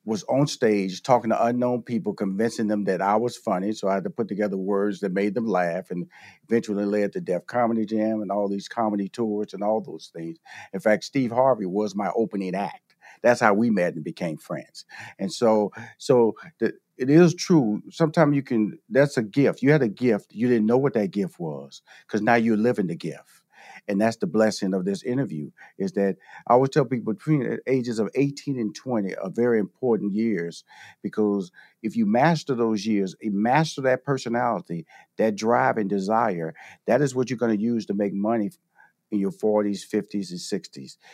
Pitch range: 100-125 Hz